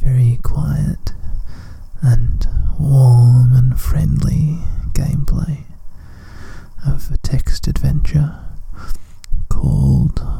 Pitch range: 85-140 Hz